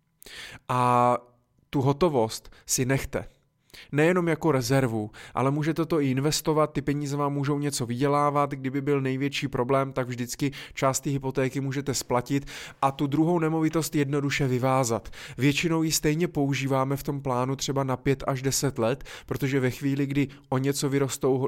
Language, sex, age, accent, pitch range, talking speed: Czech, male, 20-39, native, 125-140 Hz, 155 wpm